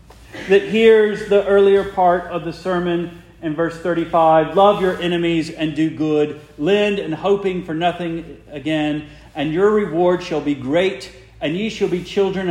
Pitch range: 125-180 Hz